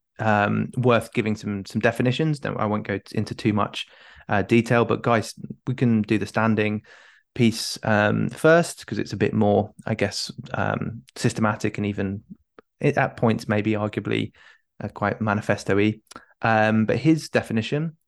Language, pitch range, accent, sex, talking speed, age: English, 105-120 Hz, British, male, 160 wpm, 20-39